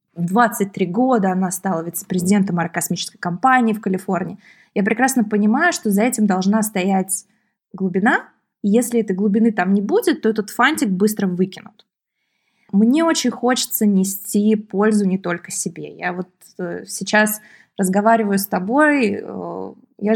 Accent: native